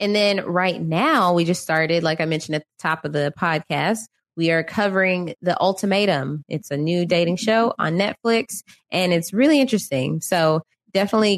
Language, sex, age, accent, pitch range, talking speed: English, female, 20-39, American, 165-205 Hz, 180 wpm